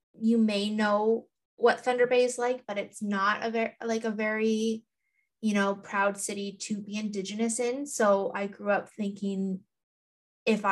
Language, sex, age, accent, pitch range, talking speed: English, female, 20-39, American, 185-215 Hz, 170 wpm